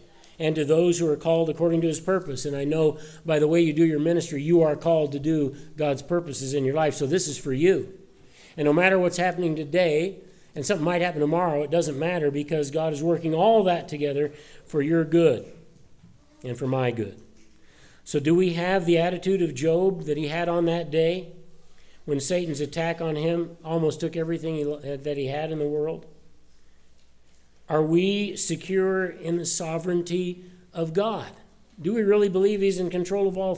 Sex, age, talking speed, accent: male, 50-69, 195 wpm, American